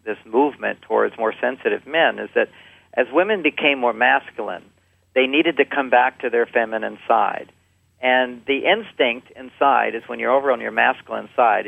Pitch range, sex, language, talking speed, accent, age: 110-130 Hz, male, English, 175 wpm, American, 50-69